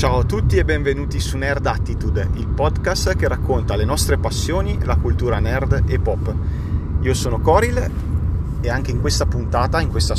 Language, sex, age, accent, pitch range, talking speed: Italian, male, 30-49, native, 90-110 Hz, 175 wpm